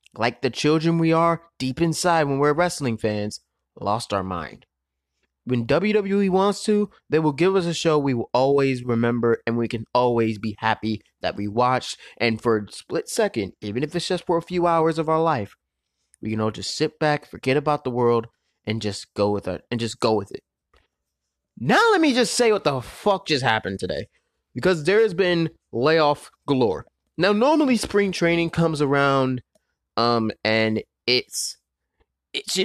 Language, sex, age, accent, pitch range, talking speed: English, male, 20-39, American, 115-170 Hz, 185 wpm